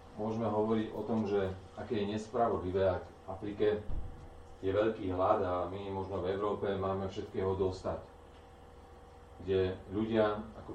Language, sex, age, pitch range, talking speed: Slovak, male, 40-59, 80-105 Hz, 135 wpm